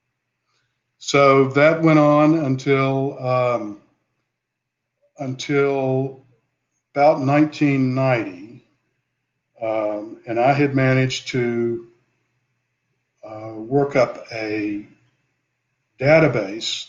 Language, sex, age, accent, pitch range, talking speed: English, male, 50-69, American, 115-130 Hz, 70 wpm